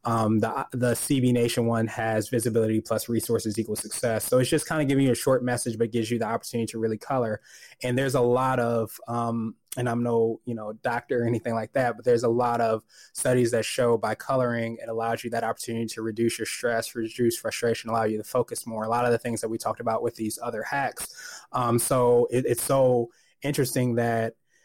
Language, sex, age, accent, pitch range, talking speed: English, male, 20-39, American, 115-125 Hz, 220 wpm